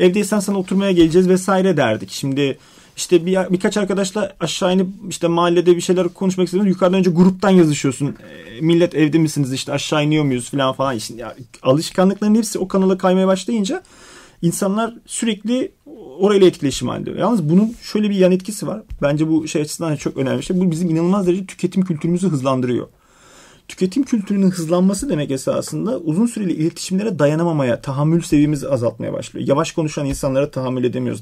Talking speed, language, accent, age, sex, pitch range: 160 wpm, Turkish, native, 40-59, male, 145-190 Hz